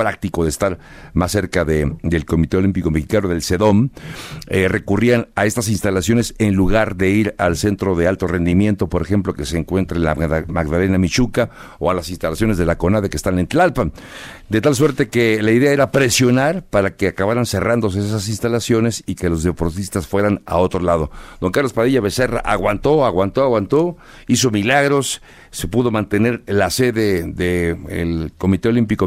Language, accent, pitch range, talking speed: Spanish, Mexican, 90-110 Hz, 175 wpm